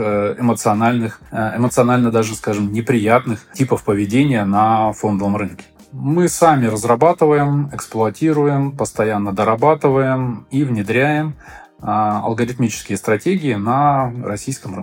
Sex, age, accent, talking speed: male, 20-39, native, 90 wpm